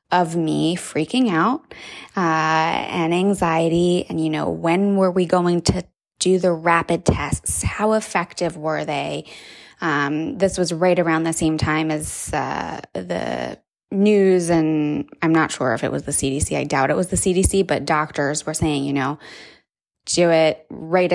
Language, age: English, 20-39